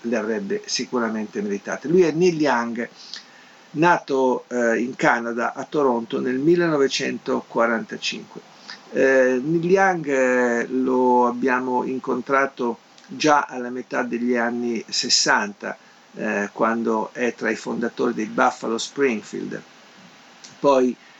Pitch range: 115-135 Hz